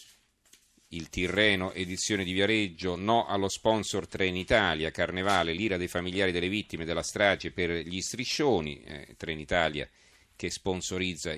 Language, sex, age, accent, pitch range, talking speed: Italian, male, 40-59, native, 85-105 Hz, 125 wpm